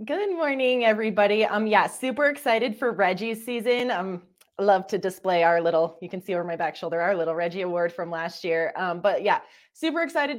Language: English